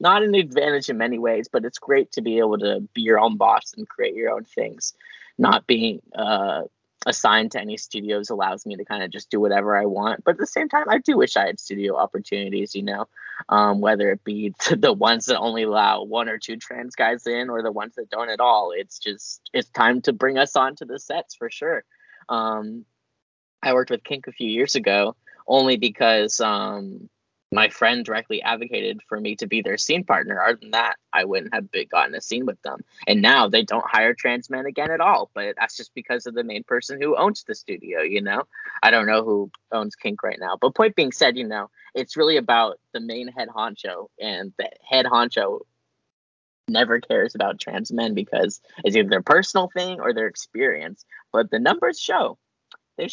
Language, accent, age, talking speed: English, American, 10-29, 215 wpm